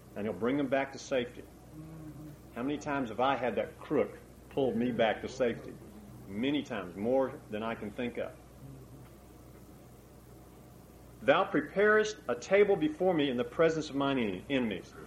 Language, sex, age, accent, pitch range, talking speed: English, male, 40-59, American, 135-185 Hz, 160 wpm